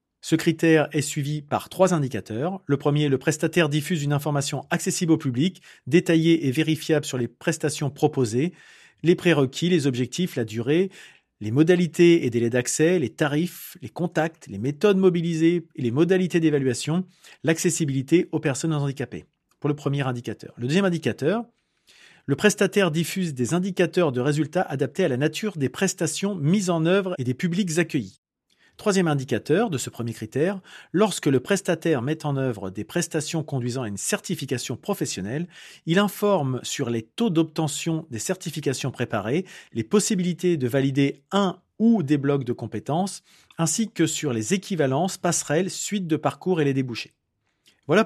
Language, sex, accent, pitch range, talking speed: French, male, French, 130-180 Hz, 160 wpm